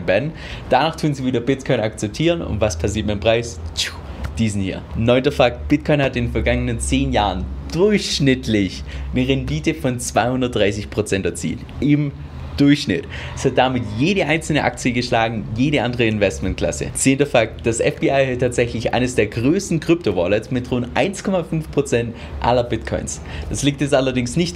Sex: male